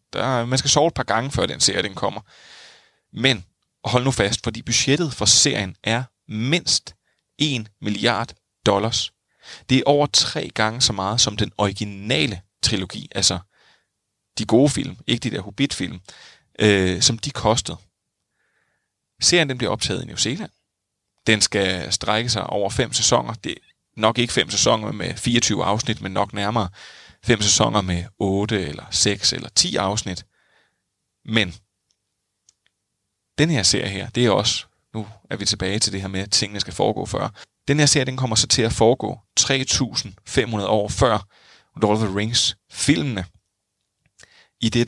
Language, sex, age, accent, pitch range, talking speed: Danish, male, 30-49, native, 100-120 Hz, 160 wpm